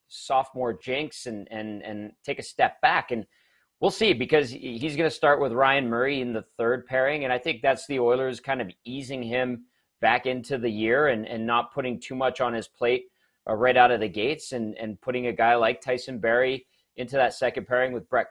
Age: 30-49